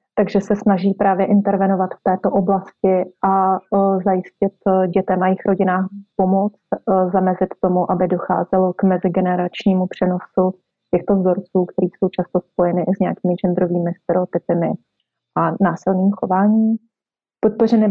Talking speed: 130 wpm